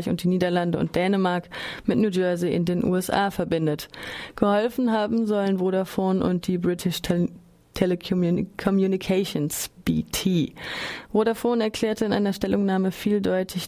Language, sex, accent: German, female, German